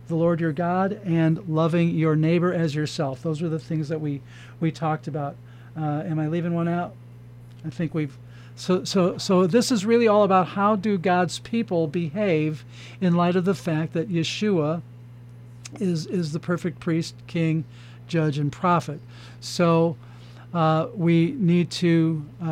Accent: American